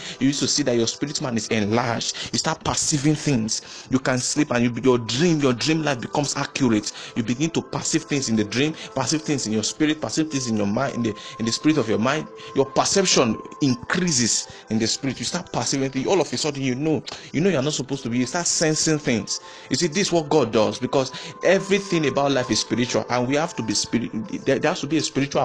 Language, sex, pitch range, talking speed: English, male, 115-150 Hz, 250 wpm